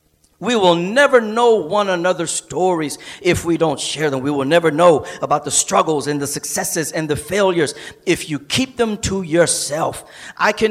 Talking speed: 185 wpm